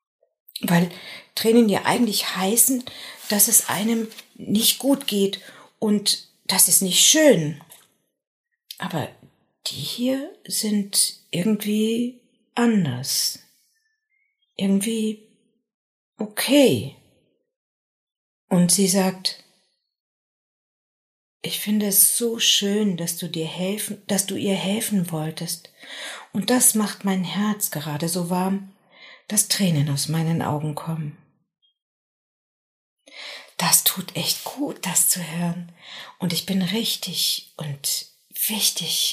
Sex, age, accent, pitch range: female, 50-69, German, 165-225 Hz